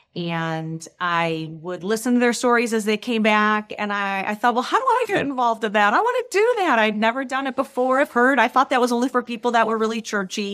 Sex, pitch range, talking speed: female, 170-215 Hz, 260 wpm